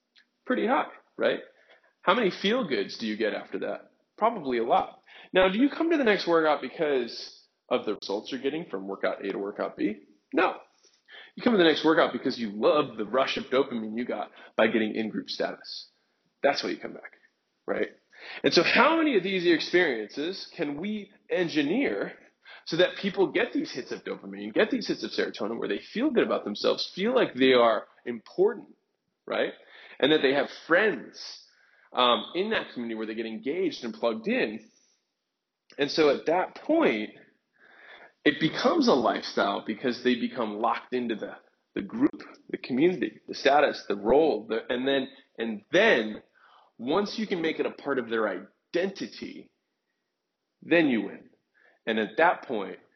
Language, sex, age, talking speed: English, male, 20-39, 180 wpm